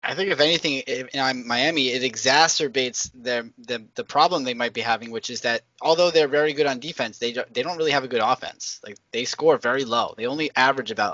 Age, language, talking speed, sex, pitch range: 20-39, English, 225 wpm, male, 125-205 Hz